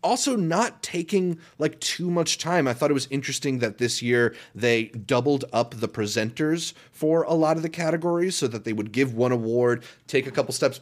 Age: 30-49